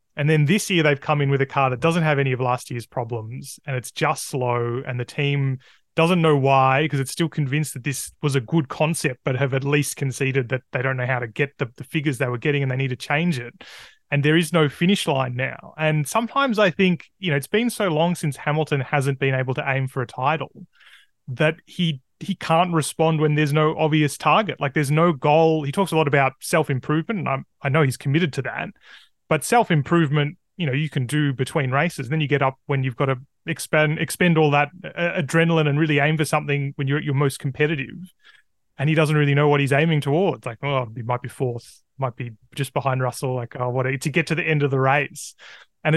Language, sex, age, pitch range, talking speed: English, male, 30-49, 135-160 Hz, 235 wpm